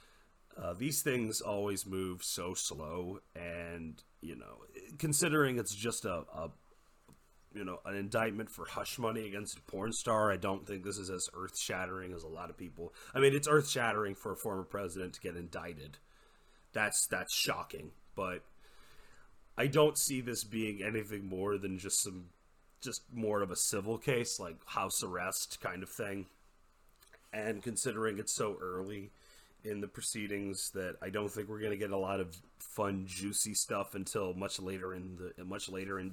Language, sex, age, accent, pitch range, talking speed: English, male, 30-49, American, 95-110 Hz, 175 wpm